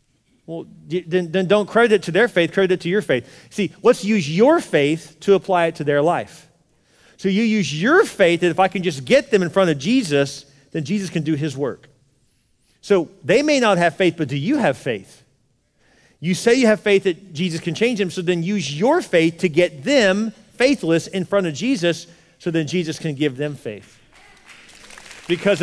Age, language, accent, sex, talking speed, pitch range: 40-59, English, American, male, 210 wpm, 175-265 Hz